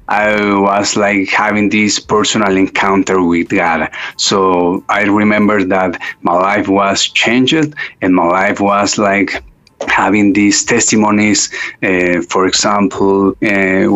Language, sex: English, male